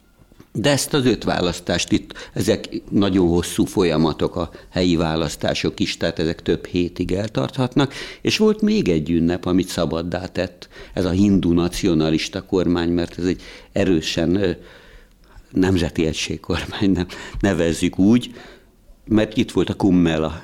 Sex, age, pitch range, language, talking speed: male, 60-79, 85-100 Hz, Hungarian, 130 wpm